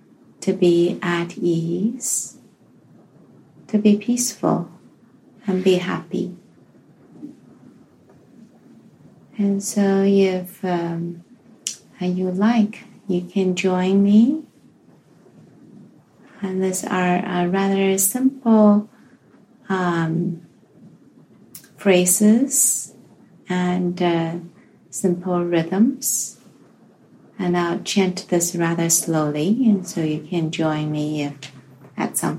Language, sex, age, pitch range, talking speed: English, female, 30-49, 165-205 Hz, 85 wpm